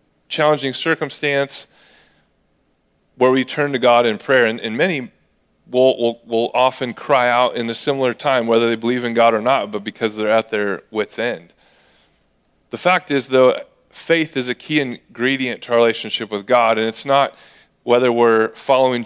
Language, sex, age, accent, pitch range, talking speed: English, male, 30-49, American, 115-150 Hz, 175 wpm